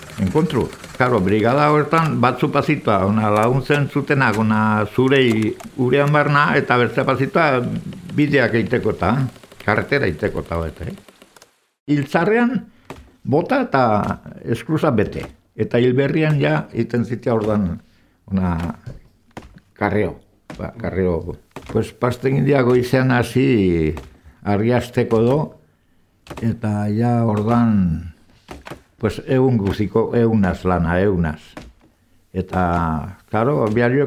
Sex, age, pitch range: male, 60-79, 95-135 Hz